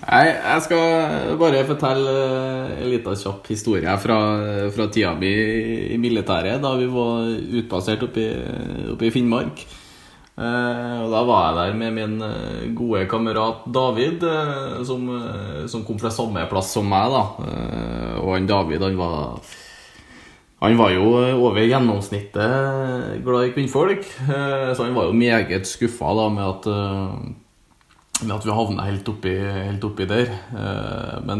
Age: 20-39